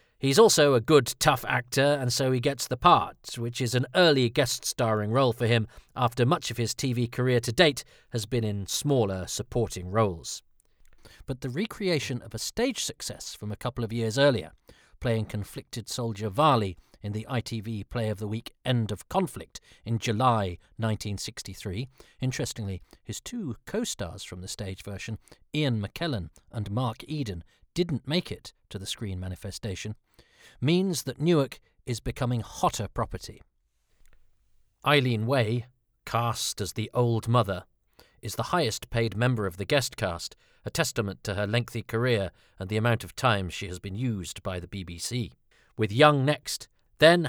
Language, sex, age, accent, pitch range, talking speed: English, male, 40-59, British, 100-130 Hz, 160 wpm